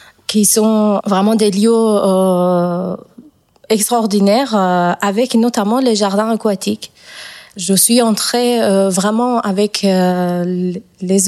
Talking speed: 110 wpm